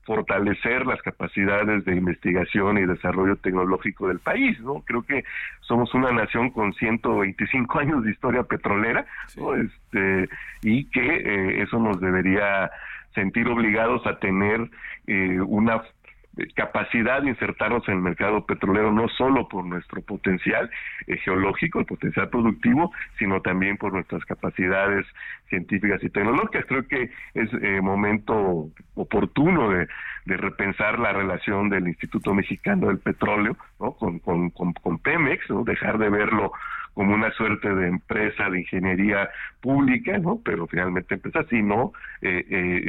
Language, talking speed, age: Spanish, 145 wpm, 50-69